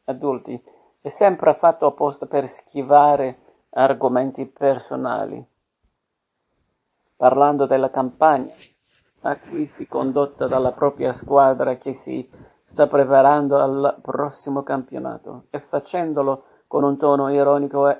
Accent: native